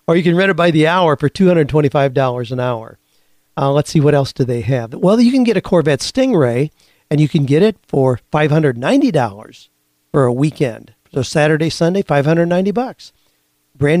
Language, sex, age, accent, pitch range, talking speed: English, male, 50-69, American, 120-155 Hz, 185 wpm